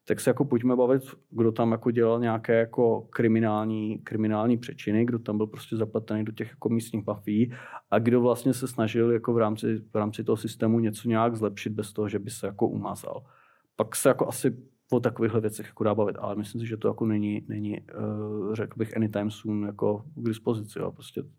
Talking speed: 205 wpm